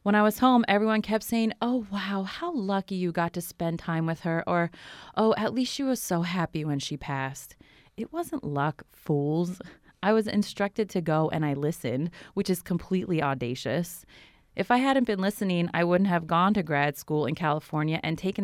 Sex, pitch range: female, 155-195 Hz